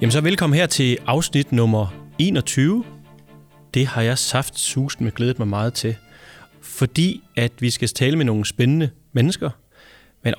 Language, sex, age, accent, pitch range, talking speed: Danish, male, 30-49, native, 115-145 Hz, 160 wpm